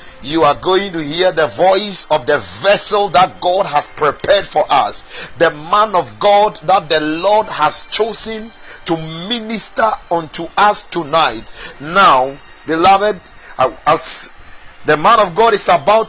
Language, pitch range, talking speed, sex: English, 145-205 Hz, 145 wpm, male